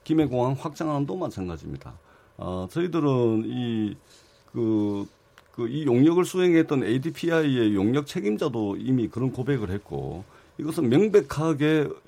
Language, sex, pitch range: Korean, male, 120-175 Hz